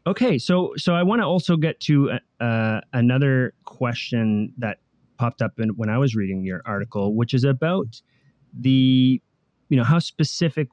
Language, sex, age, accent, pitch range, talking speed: English, male, 30-49, American, 110-145 Hz, 170 wpm